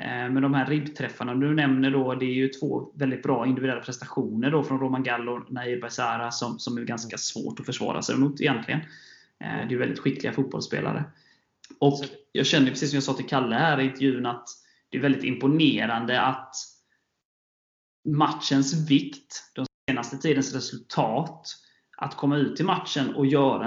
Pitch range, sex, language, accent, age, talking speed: 125-140 Hz, male, Swedish, native, 20-39, 170 wpm